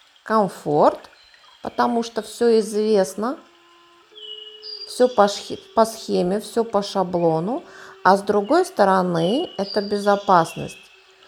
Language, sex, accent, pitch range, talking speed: Russian, female, native, 195-255 Hz, 100 wpm